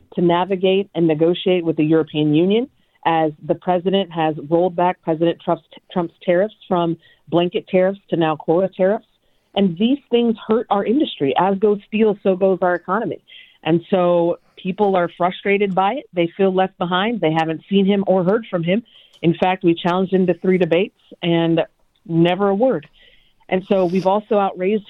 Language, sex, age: English, female, 40-59